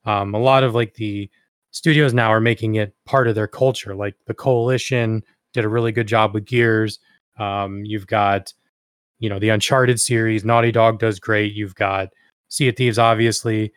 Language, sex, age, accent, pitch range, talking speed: English, male, 20-39, American, 110-125 Hz, 185 wpm